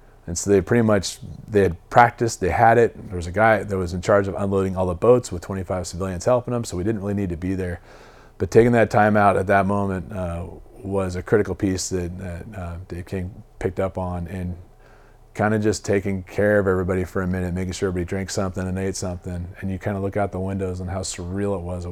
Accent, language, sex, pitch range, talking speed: American, English, male, 95-105 Hz, 250 wpm